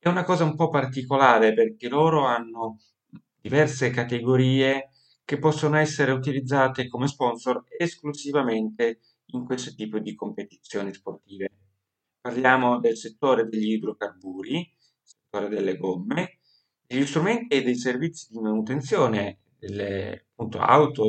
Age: 30-49